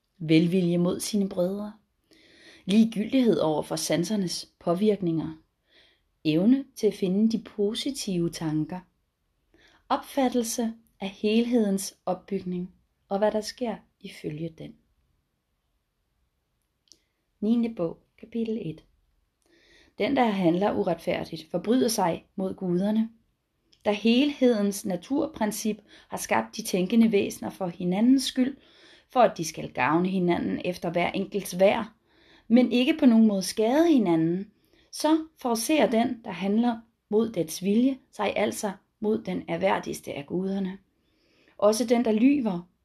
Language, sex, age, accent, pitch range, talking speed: Danish, female, 30-49, native, 180-235 Hz, 120 wpm